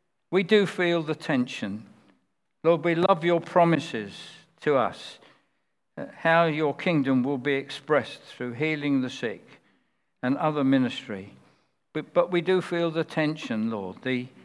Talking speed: 145 wpm